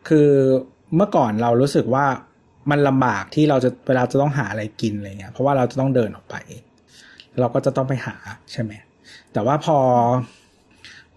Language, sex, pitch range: Thai, male, 115-140 Hz